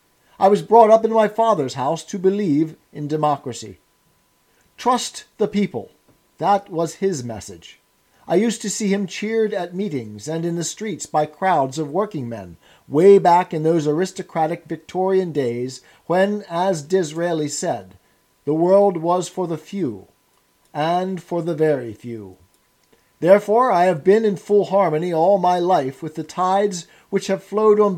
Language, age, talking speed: English, 50-69, 160 wpm